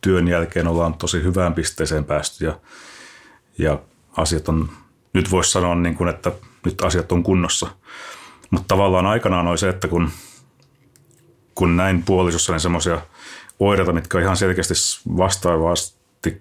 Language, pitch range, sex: Finnish, 80-90 Hz, male